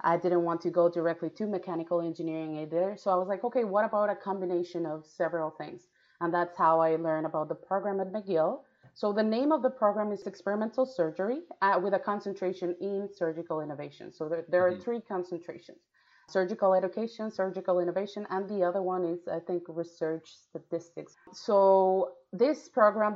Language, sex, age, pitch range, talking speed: English, female, 30-49, 170-200 Hz, 180 wpm